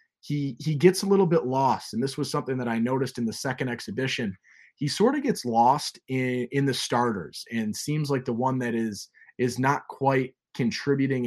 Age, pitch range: 20-39, 120-145 Hz